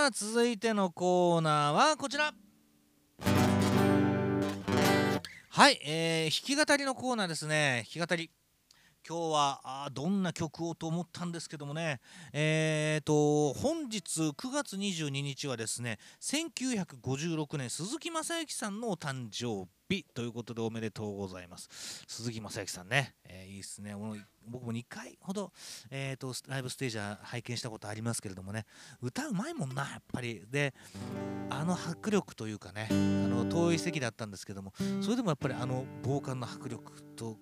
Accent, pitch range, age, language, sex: native, 110-170 Hz, 40-59, Japanese, male